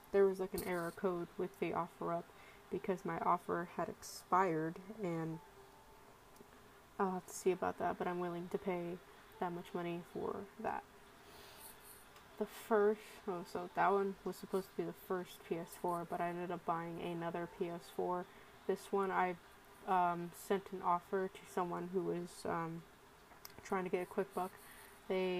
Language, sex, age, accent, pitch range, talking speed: English, female, 20-39, American, 175-195 Hz, 170 wpm